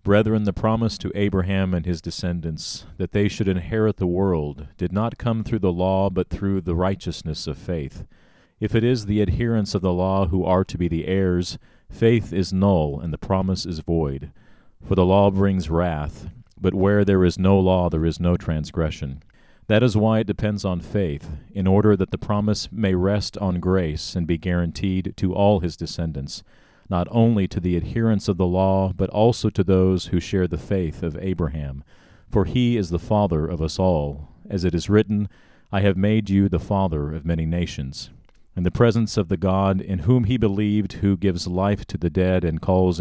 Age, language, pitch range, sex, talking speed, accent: 40-59, English, 85-100 Hz, male, 200 wpm, American